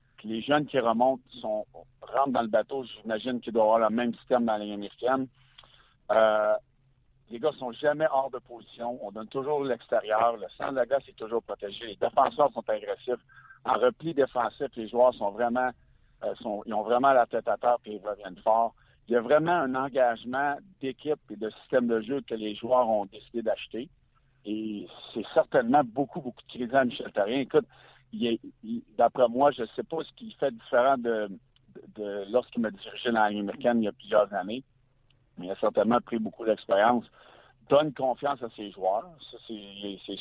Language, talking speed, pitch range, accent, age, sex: French, 200 wpm, 110-135 Hz, French, 60-79, male